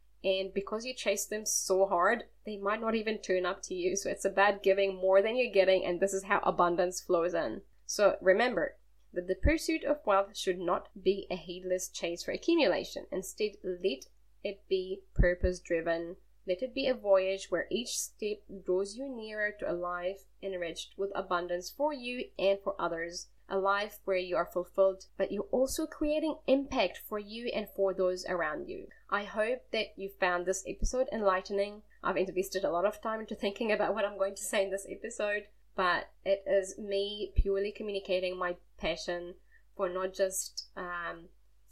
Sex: female